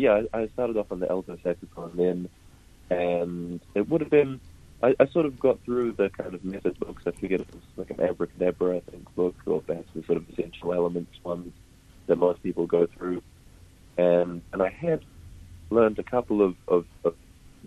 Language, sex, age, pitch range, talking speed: English, male, 30-49, 85-95 Hz, 195 wpm